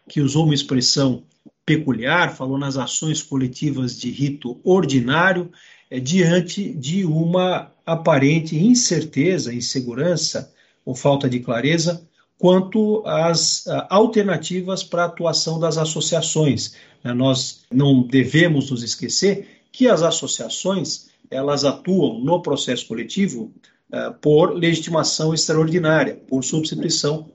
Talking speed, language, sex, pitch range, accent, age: 110 wpm, Portuguese, male, 135-185 Hz, Brazilian, 50-69